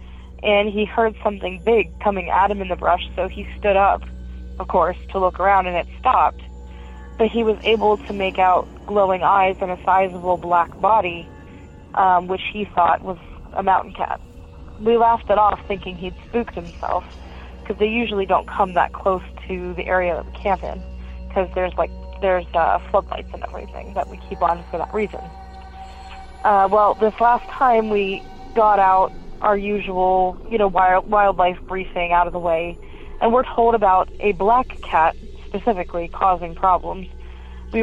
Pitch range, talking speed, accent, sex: 170-210 Hz, 175 wpm, American, female